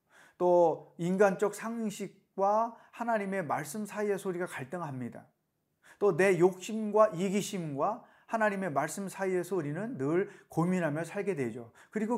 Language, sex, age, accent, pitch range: Korean, male, 40-59, native, 155-215 Hz